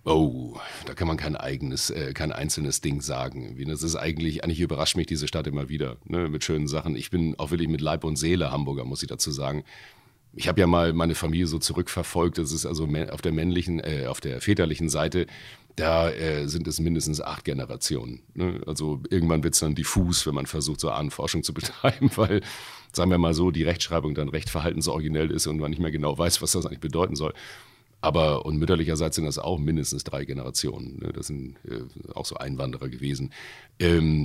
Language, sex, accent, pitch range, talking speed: German, male, German, 75-85 Hz, 210 wpm